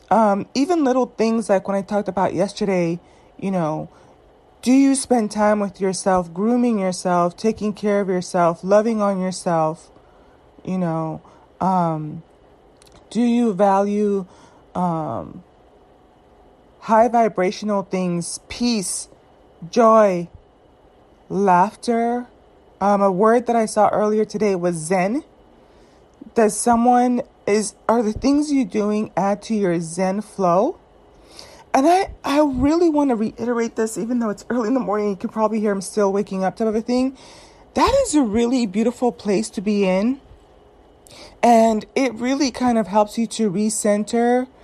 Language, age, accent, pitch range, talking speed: English, 20-39, American, 190-235 Hz, 140 wpm